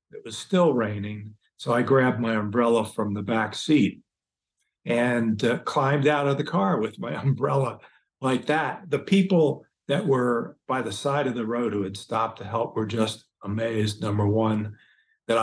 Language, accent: English, American